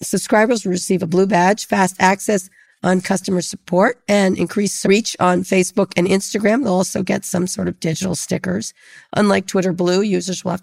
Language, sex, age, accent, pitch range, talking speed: English, female, 40-59, American, 180-205 Hz, 180 wpm